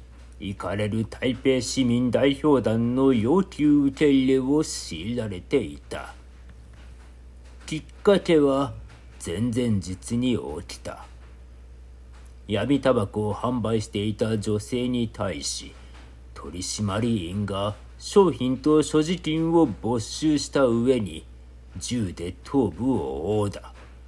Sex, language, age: male, Japanese, 50-69